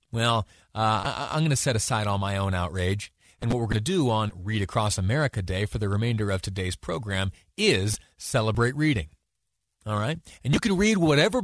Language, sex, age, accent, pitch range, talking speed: English, male, 30-49, American, 100-155 Hz, 200 wpm